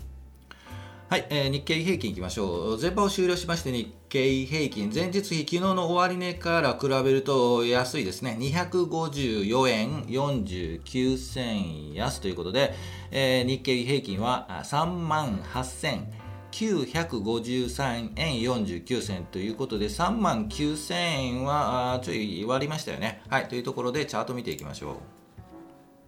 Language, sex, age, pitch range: Japanese, male, 40-59, 110-145 Hz